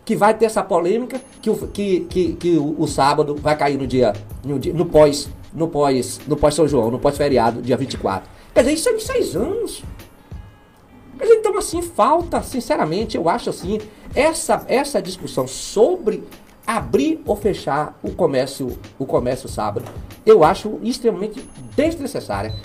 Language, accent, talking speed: Portuguese, Brazilian, 165 wpm